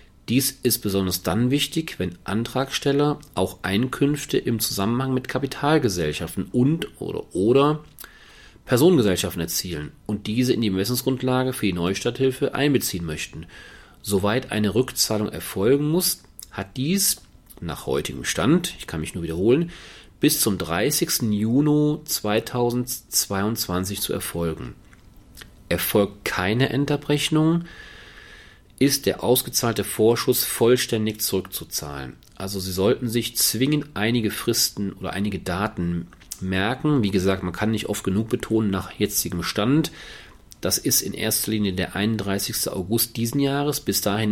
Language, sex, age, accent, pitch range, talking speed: German, male, 40-59, German, 100-135 Hz, 125 wpm